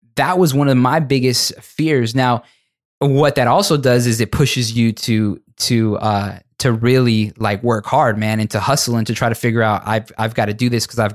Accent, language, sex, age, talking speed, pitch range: American, English, male, 20-39, 225 wpm, 110-130 Hz